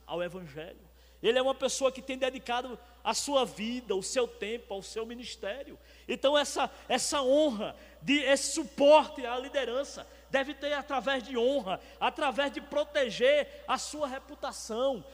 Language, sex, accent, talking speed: Portuguese, male, Brazilian, 150 wpm